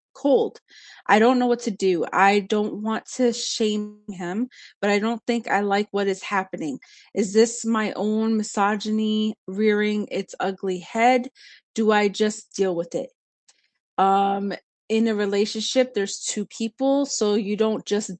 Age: 20-39